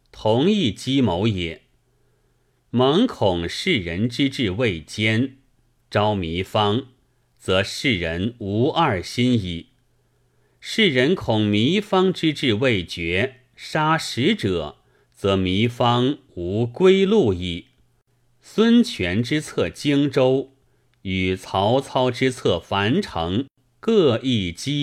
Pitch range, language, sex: 95-135 Hz, Chinese, male